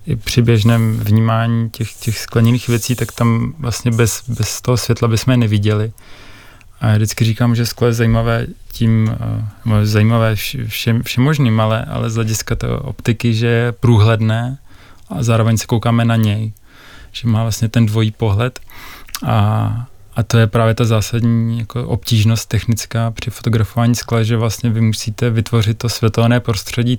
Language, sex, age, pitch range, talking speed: Czech, male, 20-39, 110-115 Hz, 160 wpm